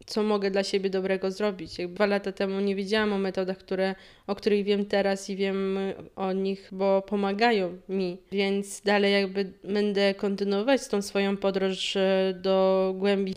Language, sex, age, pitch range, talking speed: Polish, female, 20-39, 200-220 Hz, 155 wpm